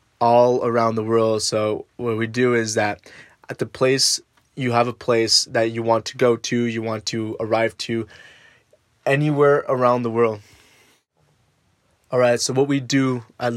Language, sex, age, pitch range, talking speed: English, male, 20-39, 110-125 Hz, 175 wpm